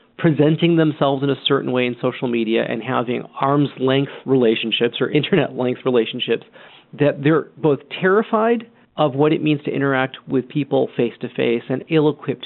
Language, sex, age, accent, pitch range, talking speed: English, male, 40-59, American, 125-155 Hz, 150 wpm